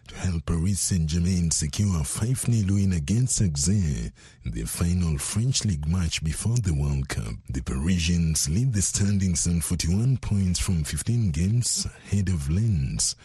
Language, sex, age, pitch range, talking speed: English, male, 60-79, 85-105 Hz, 155 wpm